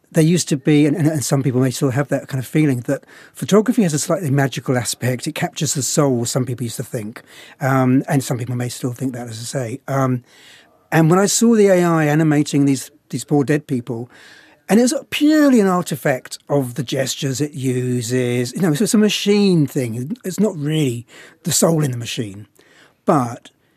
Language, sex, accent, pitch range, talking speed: English, male, British, 130-165 Hz, 205 wpm